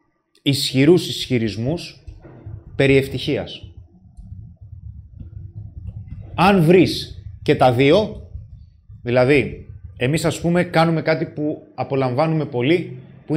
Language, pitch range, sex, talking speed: Greek, 125-160 Hz, male, 85 wpm